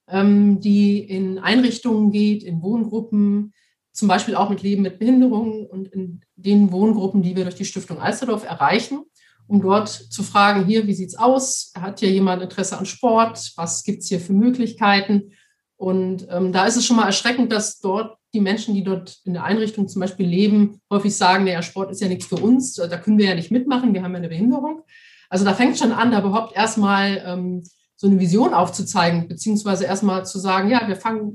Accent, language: German, German